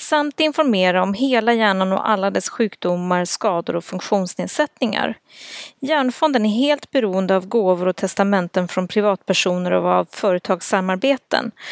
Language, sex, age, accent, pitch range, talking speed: English, female, 30-49, Swedish, 185-235 Hz, 130 wpm